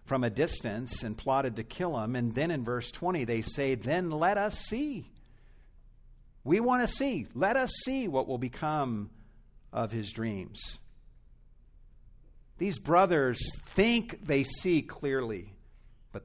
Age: 50-69